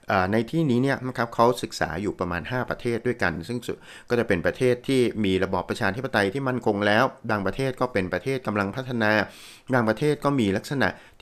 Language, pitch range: Thai, 95-125 Hz